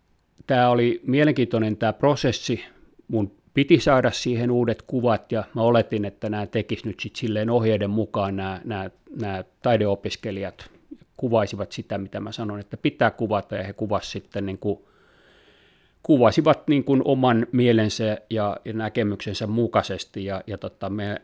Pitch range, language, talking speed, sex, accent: 100-120 Hz, Finnish, 150 wpm, male, native